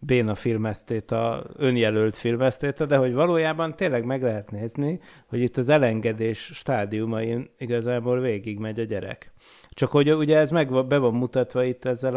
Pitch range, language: 115-140 Hz, Hungarian